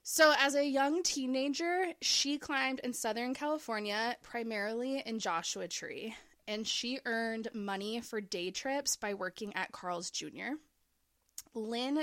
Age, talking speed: 20-39, 135 wpm